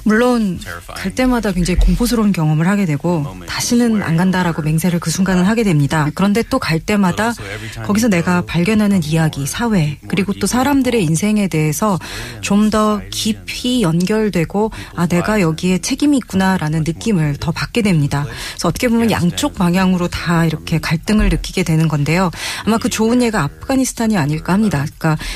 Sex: female